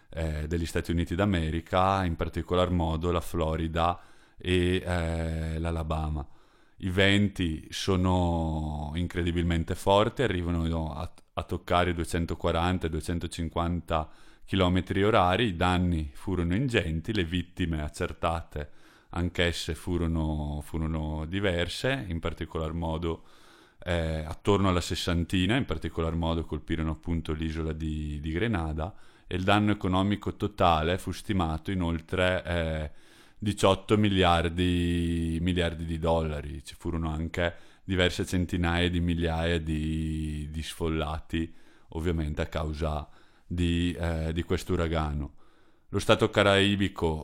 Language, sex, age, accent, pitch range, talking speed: Italian, male, 30-49, native, 80-90 Hz, 110 wpm